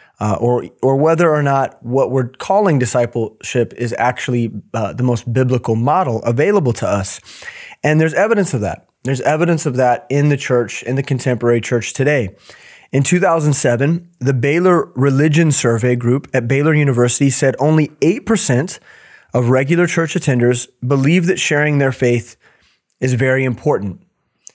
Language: English